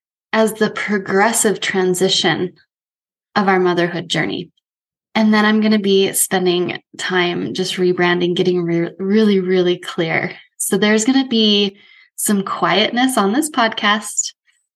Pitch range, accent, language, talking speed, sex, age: 185-220 Hz, American, English, 135 wpm, female, 20-39